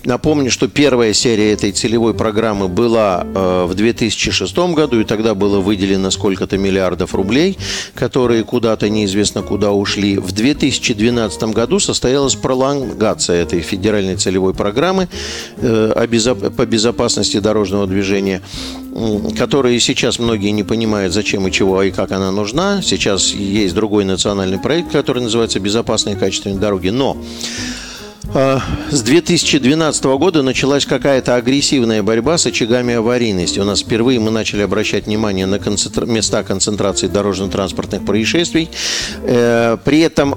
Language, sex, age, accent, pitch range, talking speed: Russian, male, 50-69, native, 100-135 Hz, 125 wpm